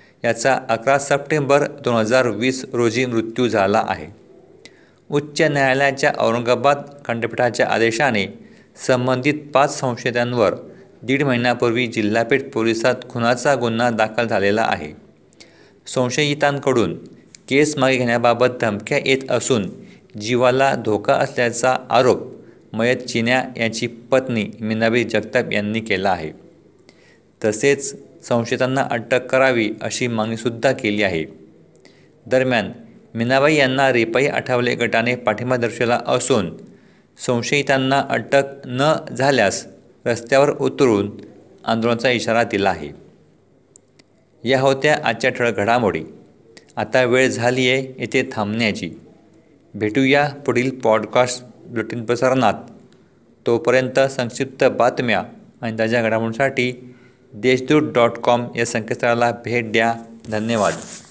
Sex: male